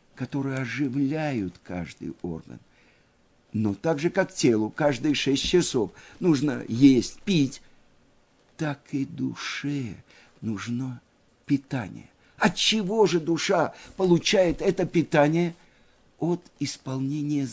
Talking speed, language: 100 wpm, Russian